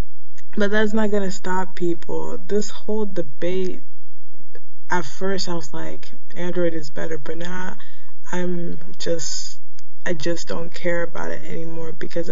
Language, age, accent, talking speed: English, 20-39, American, 145 wpm